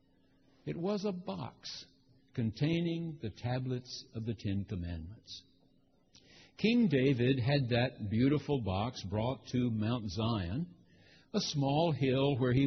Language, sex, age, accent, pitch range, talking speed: English, male, 60-79, American, 125-160 Hz, 125 wpm